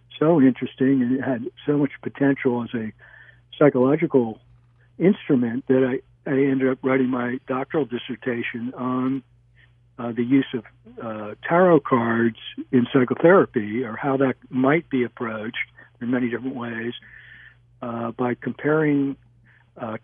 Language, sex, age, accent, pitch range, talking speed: English, male, 60-79, American, 120-140 Hz, 135 wpm